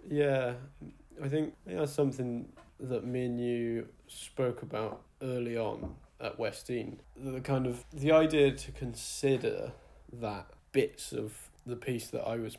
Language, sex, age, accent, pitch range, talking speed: English, male, 20-39, British, 115-135 Hz, 145 wpm